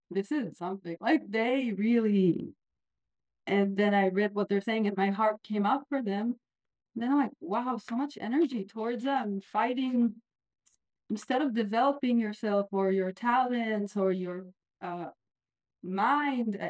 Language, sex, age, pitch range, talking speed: English, female, 30-49, 200-255 Hz, 150 wpm